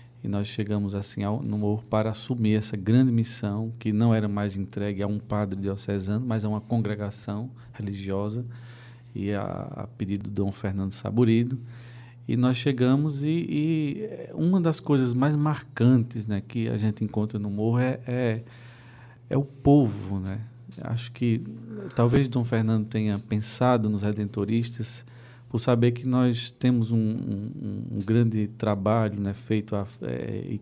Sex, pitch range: male, 105-120 Hz